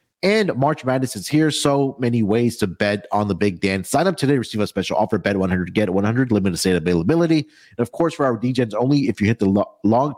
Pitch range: 100-145 Hz